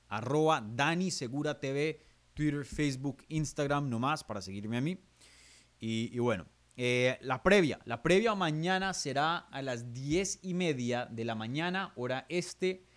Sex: male